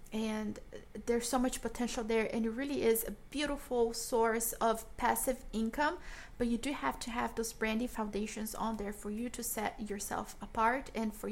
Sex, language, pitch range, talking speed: female, English, 220-245 Hz, 185 wpm